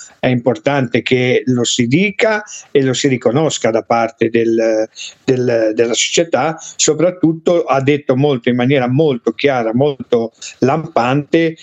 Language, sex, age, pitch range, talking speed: Italian, male, 50-69, 125-155 Hz, 135 wpm